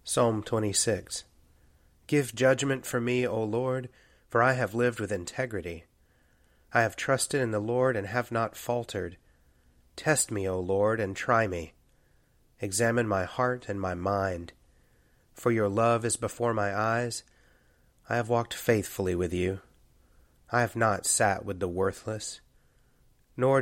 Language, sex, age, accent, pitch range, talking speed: English, male, 30-49, American, 95-120 Hz, 145 wpm